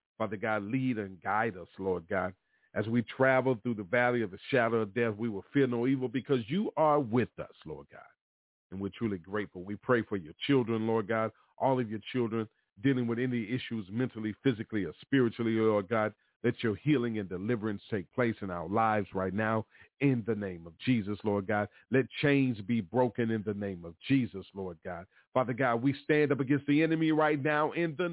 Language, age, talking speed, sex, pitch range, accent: English, 40-59, 210 wpm, male, 110-145 Hz, American